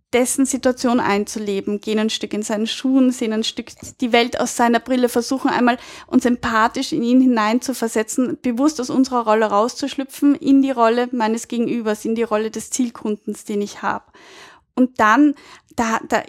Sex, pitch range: female, 215-255 Hz